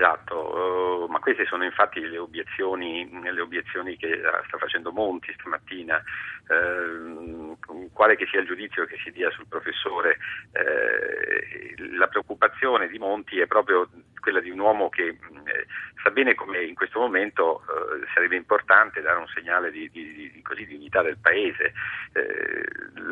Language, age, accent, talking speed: Italian, 50-69, native, 145 wpm